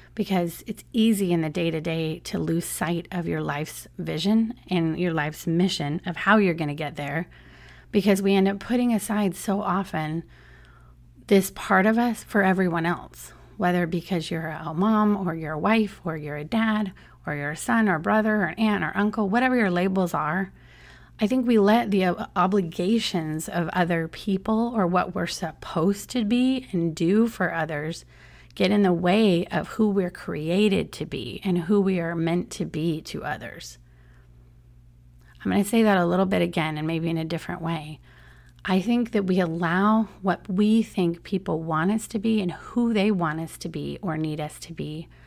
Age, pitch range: 30-49, 160-205 Hz